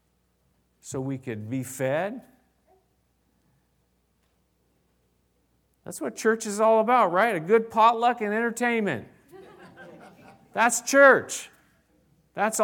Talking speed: 95 wpm